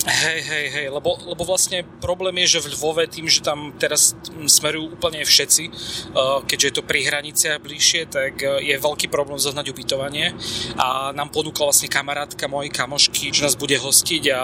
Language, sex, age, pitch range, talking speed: Slovak, male, 30-49, 135-155 Hz, 185 wpm